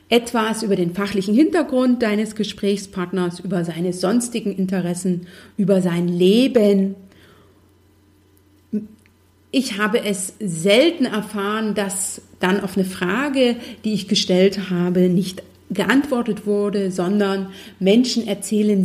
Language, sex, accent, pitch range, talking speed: German, female, German, 180-225 Hz, 110 wpm